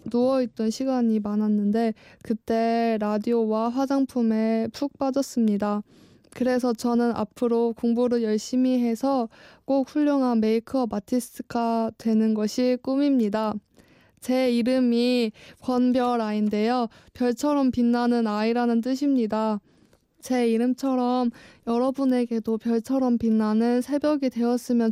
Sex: female